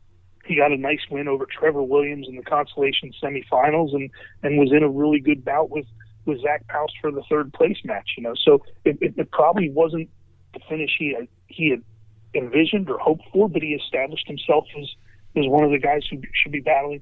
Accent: American